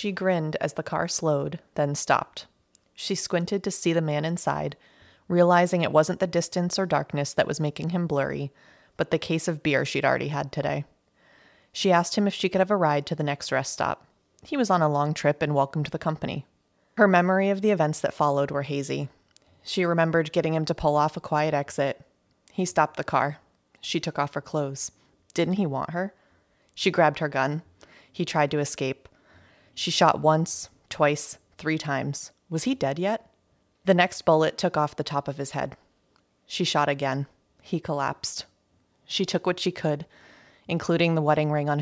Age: 30-49